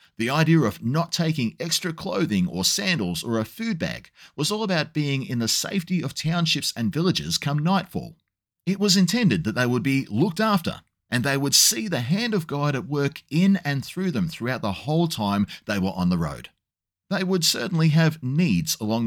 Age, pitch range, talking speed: 30-49, 120-180 Hz, 200 wpm